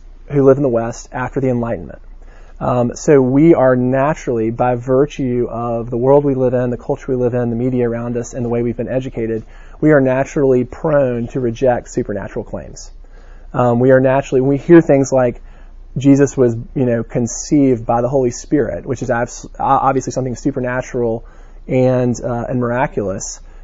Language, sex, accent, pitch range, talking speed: English, male, American, 120-130 Hz, 175 wpm